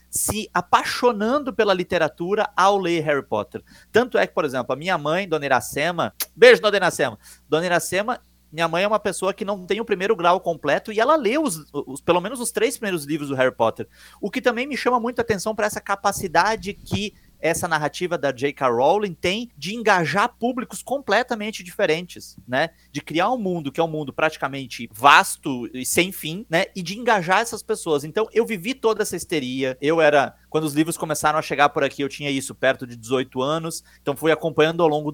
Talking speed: 205 wpm